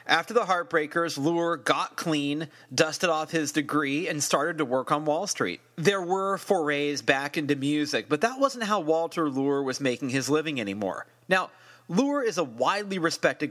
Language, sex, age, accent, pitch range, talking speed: English, male, 30-49, American, 145-185 Hz, 180 wpm